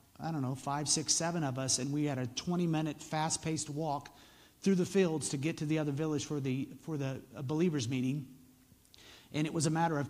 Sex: male